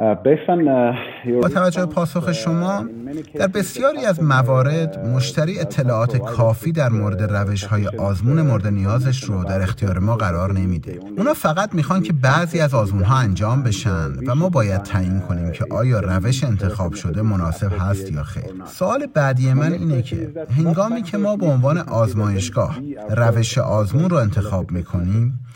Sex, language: male, Persian